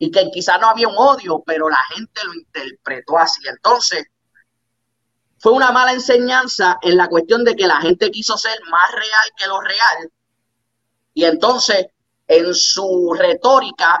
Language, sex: Spanish, male